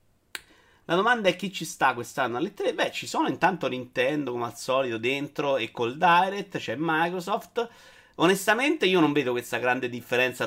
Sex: male